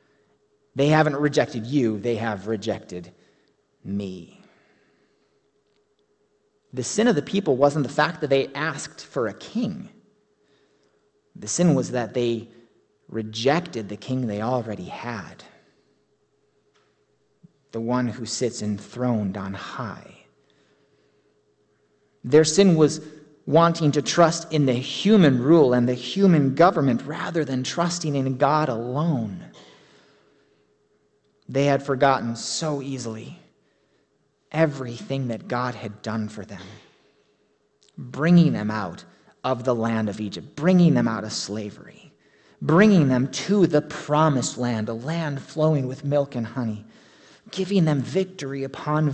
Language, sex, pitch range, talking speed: English, male, 115-160 Hz, 125 wpm